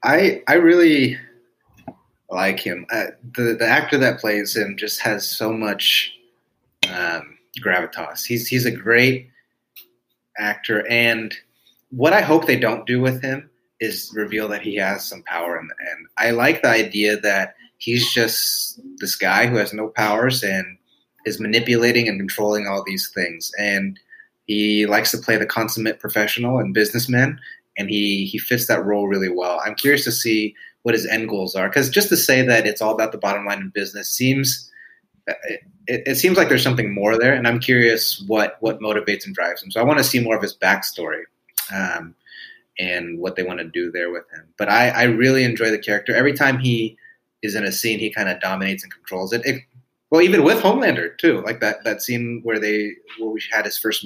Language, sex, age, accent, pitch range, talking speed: English, male, 30-49, American, 105-125 Hz, 195 wpm